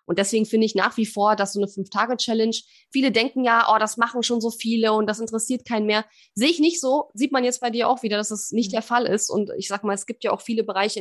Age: 20-39